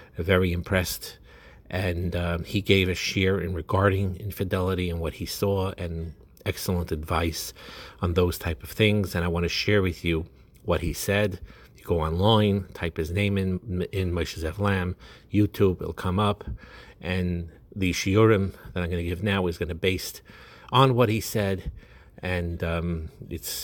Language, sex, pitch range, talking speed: English, male, 85-105 Hz, 175 wpm